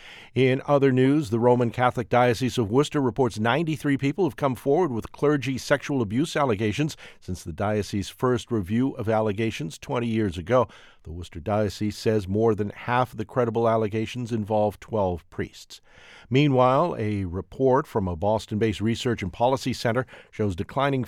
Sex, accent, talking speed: male, American, 160 wpm